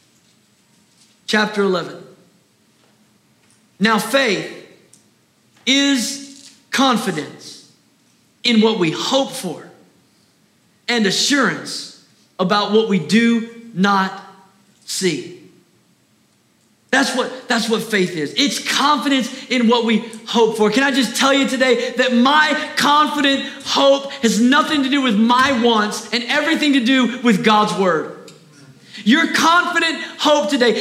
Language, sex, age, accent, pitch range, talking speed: English, male, 40-59, American, 210-285 Hz, 115 wpm